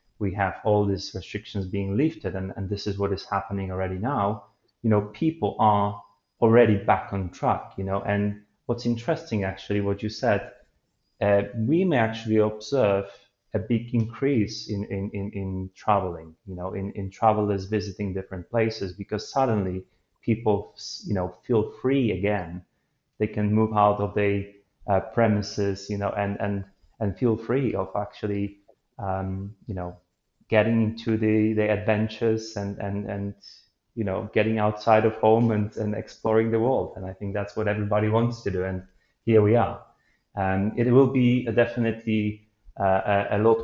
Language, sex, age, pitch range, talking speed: English, male, 30-49, 100-110 Hz, 170 wpm